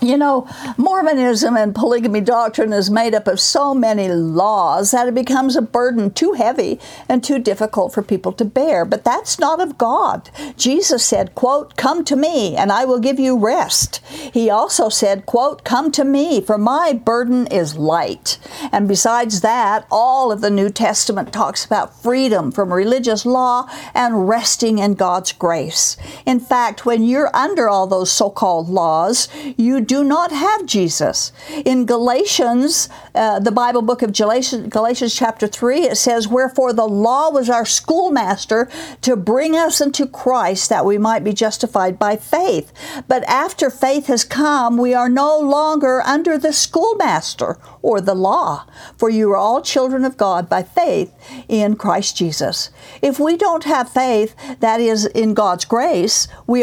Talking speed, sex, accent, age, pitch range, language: 170 wpm, female, American, 60-79, 210-275 Hz, English